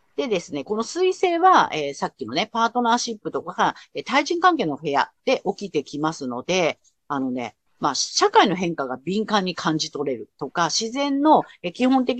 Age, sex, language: 40-59, female, Japanese